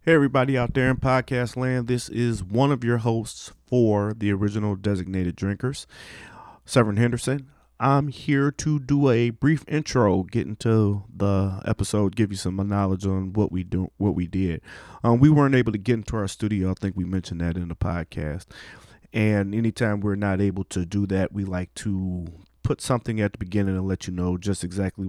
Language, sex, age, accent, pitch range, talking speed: English, male, 30-49, American, 95-115 Hz, 195 wpm